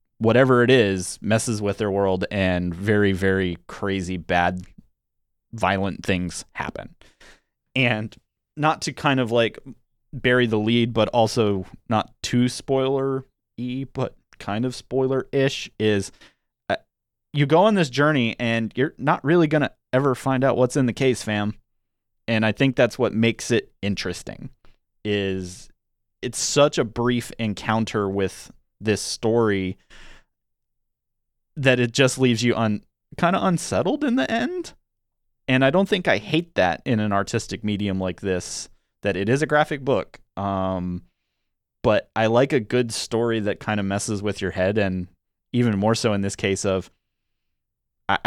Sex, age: male, 30-49